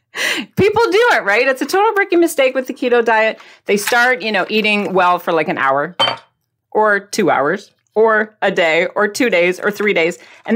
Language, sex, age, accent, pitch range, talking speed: English, female, 40-59, American, 180-270 Hz, 205 wpm